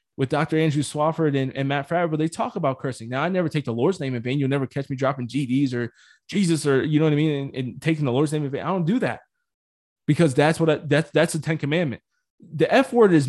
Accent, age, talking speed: American, 20-39, 270 wpm